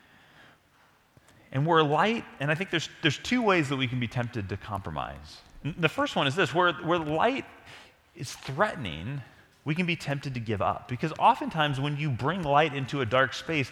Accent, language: American, English